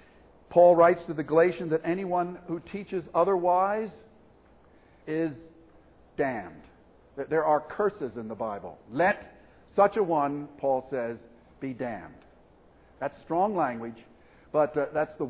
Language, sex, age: English, male, 50-69